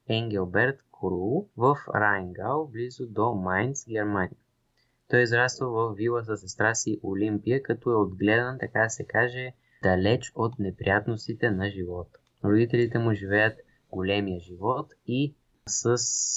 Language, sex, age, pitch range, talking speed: Bulgarian, male, 20-39, 100-120 Hz, 130 wpm